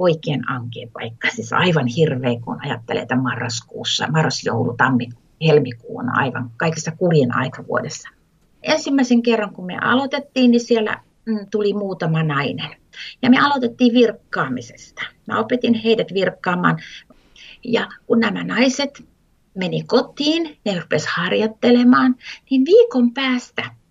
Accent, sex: native, female